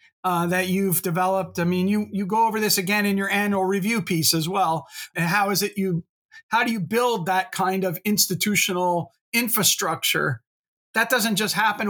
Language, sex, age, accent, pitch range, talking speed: English, male, 40-59, American, 180-210 Hz, 195 wpm